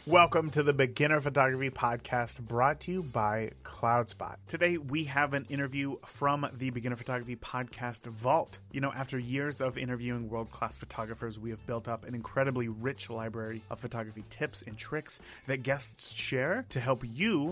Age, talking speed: 30-49, 170 wpm